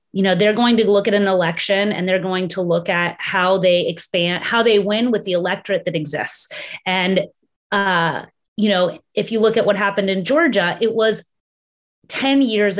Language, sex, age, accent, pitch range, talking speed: English, female, 30-49, American, 180-215 Hz, 195 wpm